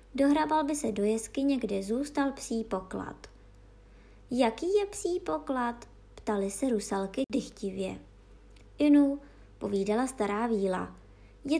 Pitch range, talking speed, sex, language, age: 200-275 Hz, 115 wpm, male, Czech, 20-39